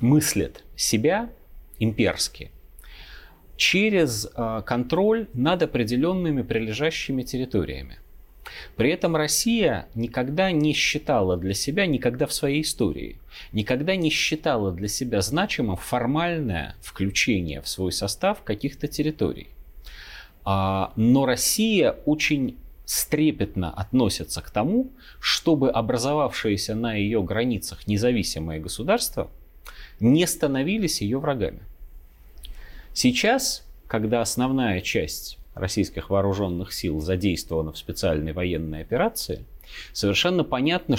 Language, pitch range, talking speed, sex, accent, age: Russian, 95-145 Hz, 95 wpm, male, native, 30-49